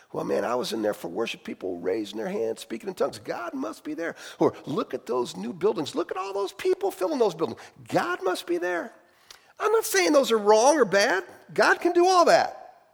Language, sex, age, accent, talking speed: English, male, 50-69, American, 230 wpm